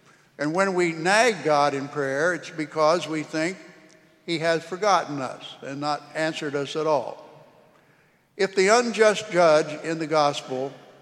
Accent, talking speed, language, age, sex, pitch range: American, 150 wpm, English, 60-79, male, 155-190 Hz